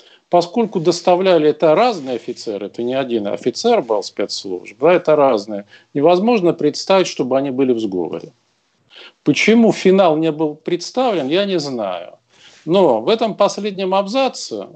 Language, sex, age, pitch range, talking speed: Russian, male, 50-69, 130-195 Hz, 135 wpm